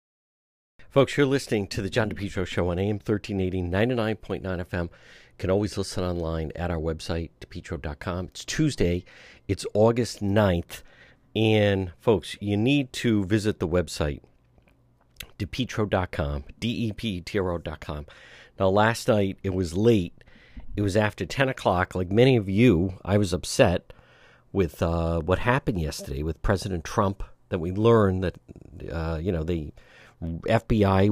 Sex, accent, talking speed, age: male, American, 140 wpm, 50-69